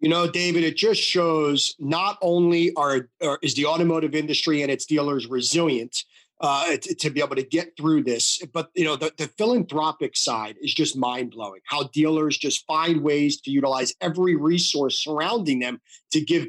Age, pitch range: 30-49, 150-190 Hz